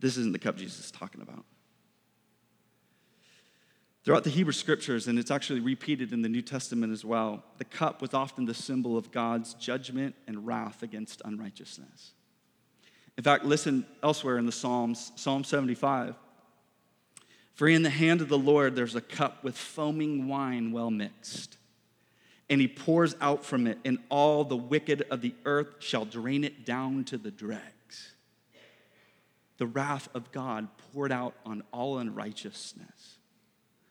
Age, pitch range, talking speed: 30-49, 120-155 Hz, 155 wpm